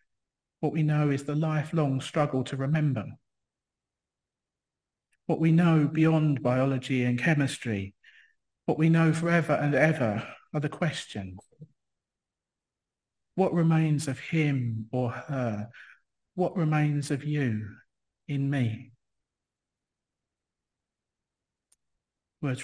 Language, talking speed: English, 100 wpm